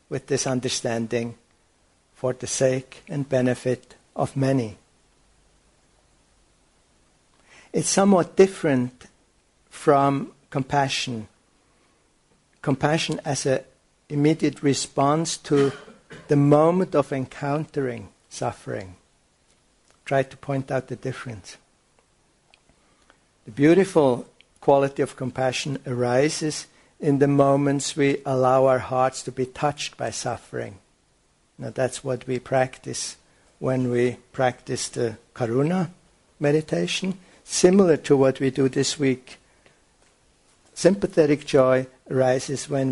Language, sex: English, male